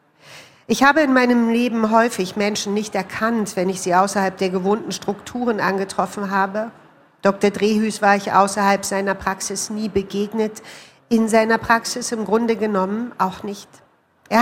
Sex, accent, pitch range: female, German, 195-220 Hz